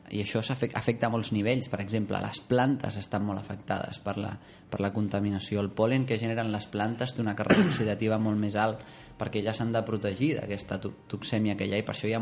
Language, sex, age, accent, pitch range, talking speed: Spanish, male, 20-39, Spanish, 100-115 Hz, 225 wpm